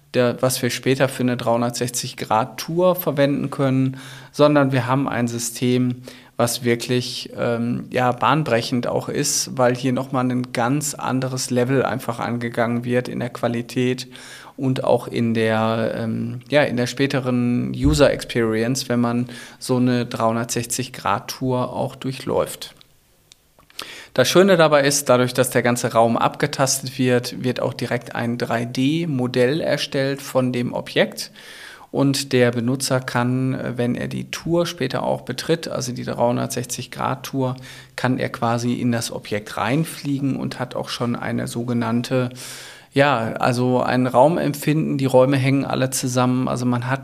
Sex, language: male, German